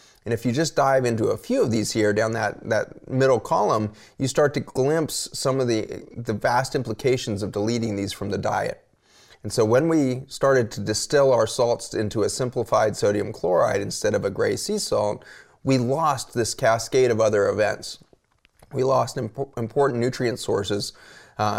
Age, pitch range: 30-49, 105-135 Hz